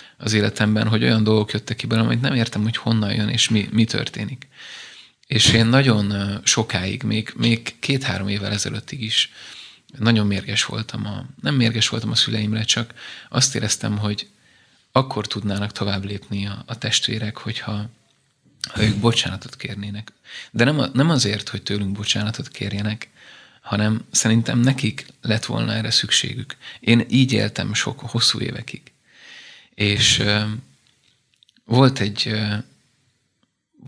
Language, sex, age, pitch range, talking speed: Hungarian, male, 30-49, 105-120 Hz, 140 wpm